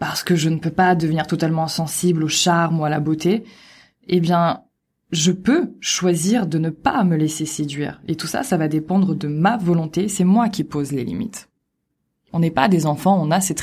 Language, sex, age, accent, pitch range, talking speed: French, female, 20-39, French, 160-195 Hz, 215 wpm